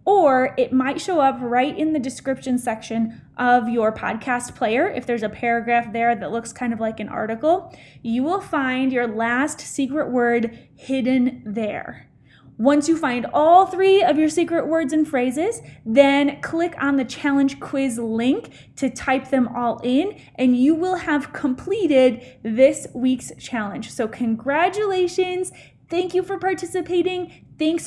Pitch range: 245-320 Hz